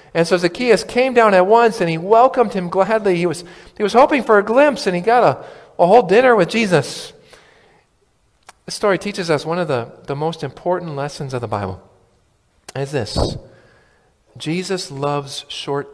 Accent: American